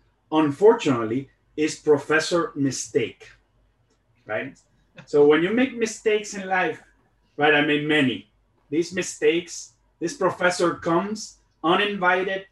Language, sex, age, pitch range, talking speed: English, male, 30-49, 145-215 Hz, 110 wpm